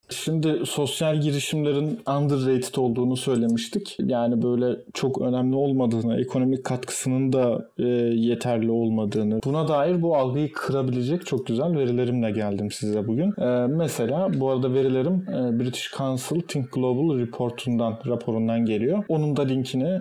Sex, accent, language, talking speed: male, native, Turkish, 130 wpm